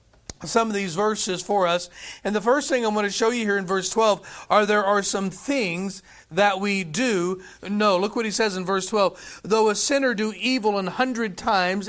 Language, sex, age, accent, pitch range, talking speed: English, male, 40-59, American, 195-230 Hz, 210 wpm